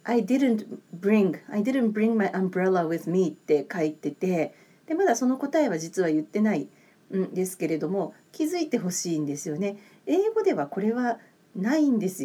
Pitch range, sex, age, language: 180-250 Hz, female, 40-59, Japanese